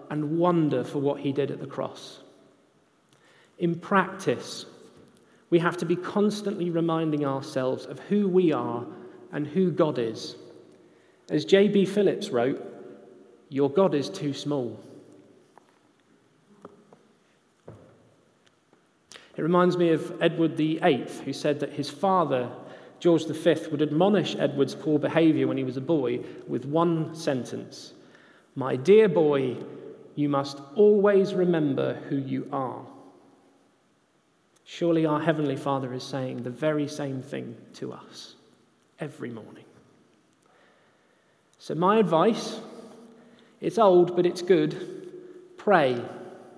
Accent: British